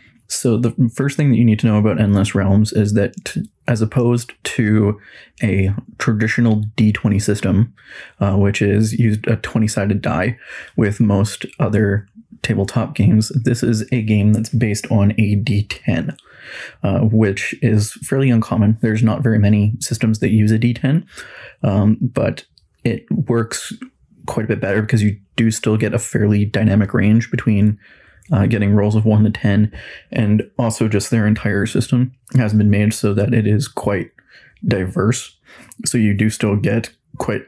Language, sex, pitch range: English, male, 105-120 Hz